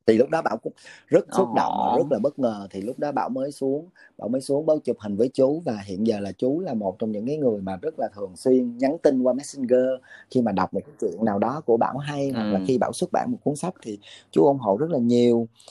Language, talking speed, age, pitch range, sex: Vietnamese, 285 wpm, 20-39, 115-140 Hz, male